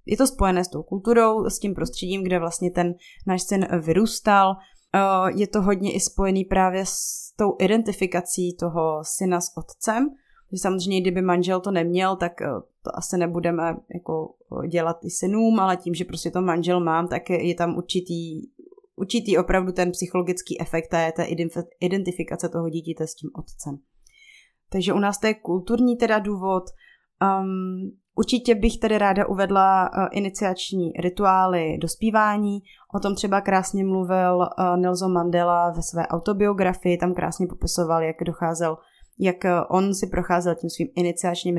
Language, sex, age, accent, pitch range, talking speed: Czech, female, 30-49, native, 175-195 Hz, 155 wpm